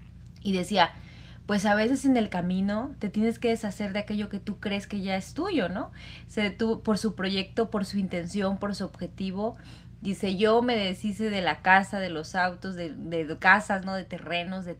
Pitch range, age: 190-230 Hz, 20-39